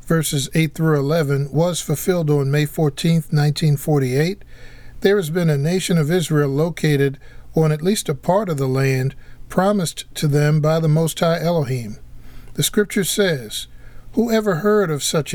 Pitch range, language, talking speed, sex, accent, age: 140-180 Hz, English, 165 wpm, male, American, 50-69